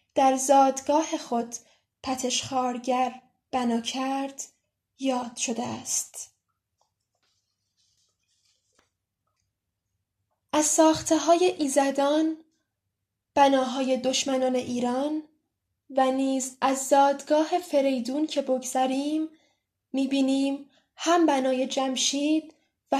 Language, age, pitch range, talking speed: Persian, 10-29, 245-280 Hz, 75 wpm